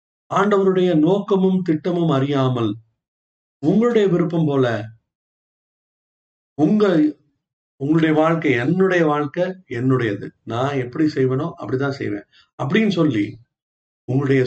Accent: native